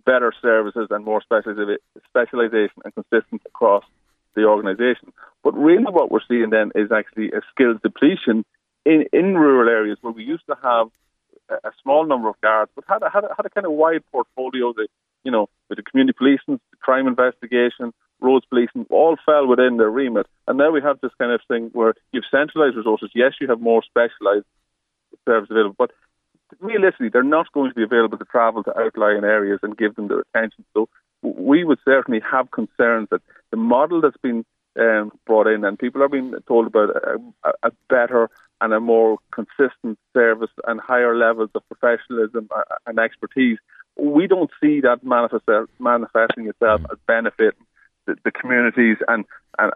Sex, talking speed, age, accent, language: male, 180 wpm, 30-49, Irish, English